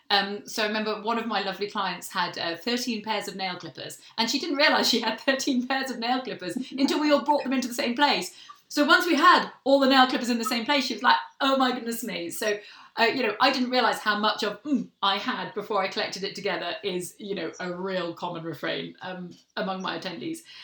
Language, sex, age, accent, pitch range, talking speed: English, female, 30-49, British, 205-280 Hz, 245 wpm